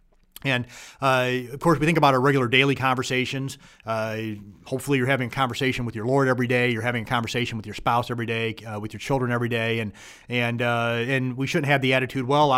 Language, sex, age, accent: English, male, 30-49, American